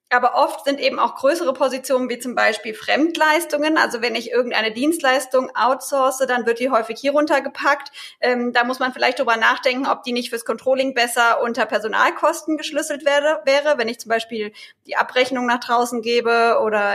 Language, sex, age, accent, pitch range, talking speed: German, female, 20-39, German, 235-280 Hz, 175 wpm